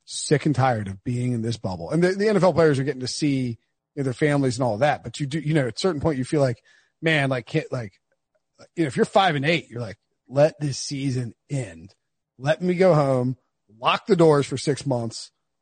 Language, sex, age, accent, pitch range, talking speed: English, male, 30-49, American, 130-170 Hz, 240 wpm